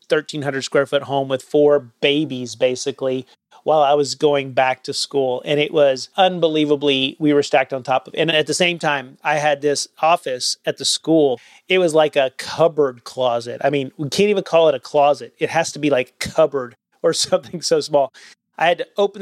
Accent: American